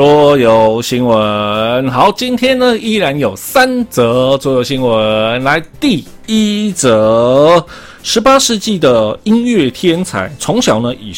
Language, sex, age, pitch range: Chinese, male, 20-39, 110-170 Hz